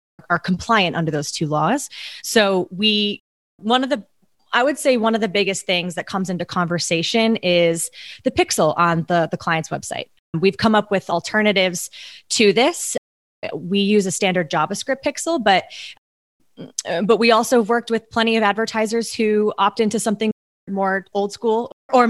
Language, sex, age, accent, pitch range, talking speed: English, female, 20-39, American, 170-225 Hz, 170 wpm